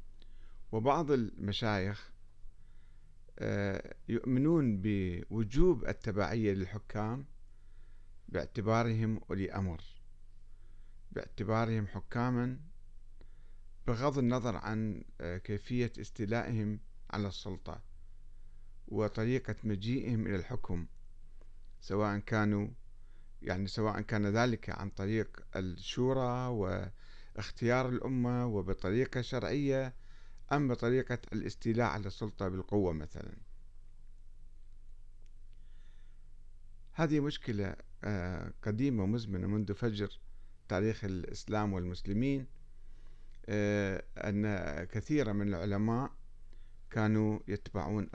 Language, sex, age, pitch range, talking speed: Arabic, male, 50-69, 95-115 Hz, 70 wpm